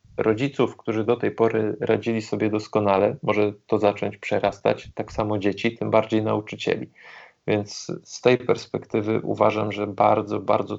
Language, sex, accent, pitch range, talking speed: Polish, male, native, 105-115 Hz, 145 wpm